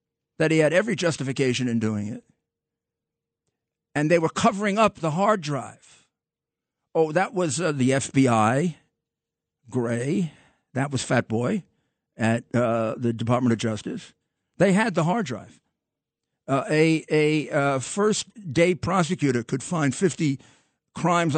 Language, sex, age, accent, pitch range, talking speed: English, male, 50-69, American, 125-165 Hz, 135 wpm